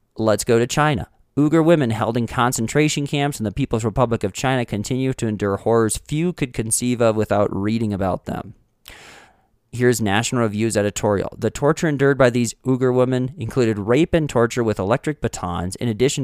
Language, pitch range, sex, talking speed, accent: English, 100-130 Hz, male, 175 wpm, American